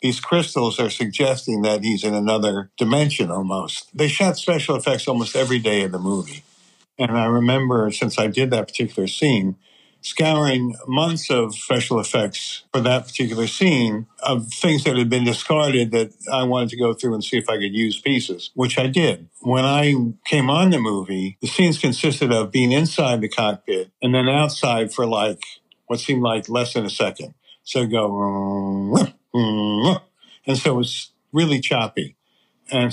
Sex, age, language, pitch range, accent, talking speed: male, 60-79, English, 115-140 Hz, American, 175 wpm